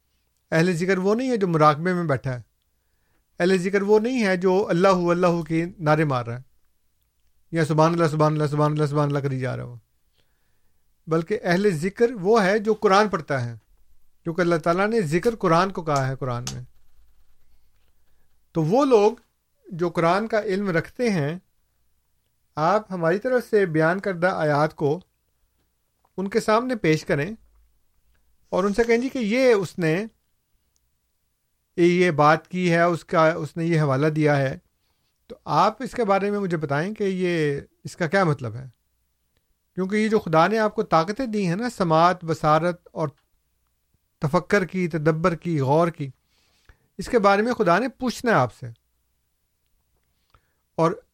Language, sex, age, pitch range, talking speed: Urdu, male, 50-69, 140-195 Hz, 175 wpm